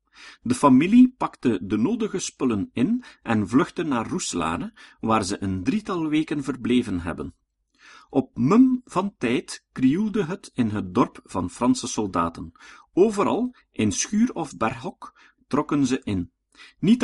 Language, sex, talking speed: Dutch, male, 135 wpm